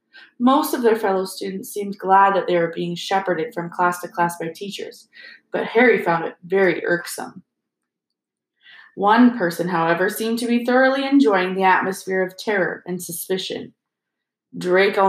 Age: 20-39